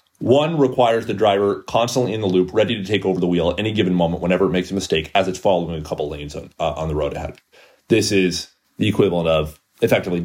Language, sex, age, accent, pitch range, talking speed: English, male, 30-49, American, 80-110 Hz, 240 wpm